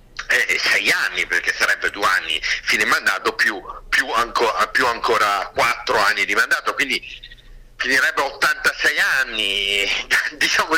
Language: Italian